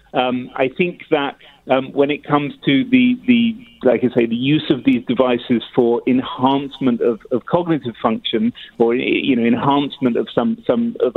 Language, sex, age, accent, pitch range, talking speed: English, male, 40-59, British, 120-150 Hz, 175 wpm